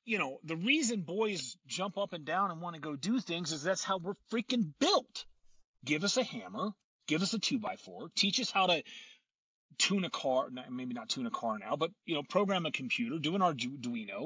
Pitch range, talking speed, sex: 130-210 Hz, 215 wpm, male